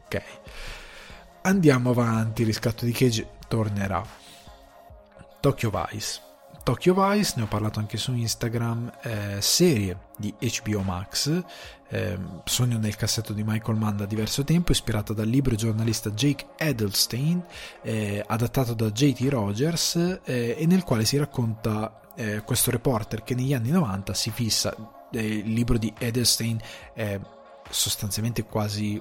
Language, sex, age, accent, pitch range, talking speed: Italian, male, 20-39, native, 105-125 Hz, 140 wpm